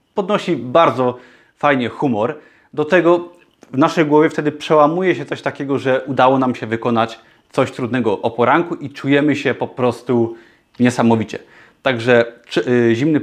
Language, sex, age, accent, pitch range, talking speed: Polish, male, 30-49, native, 120-155 Hz, 140 wpm